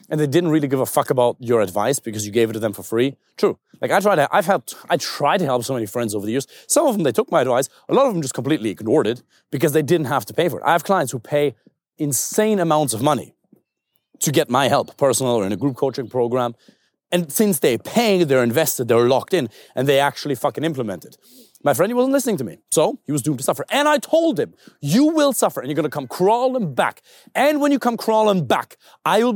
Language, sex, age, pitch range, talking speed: English, male, 30-49, 135-210 Hz, 255 wpm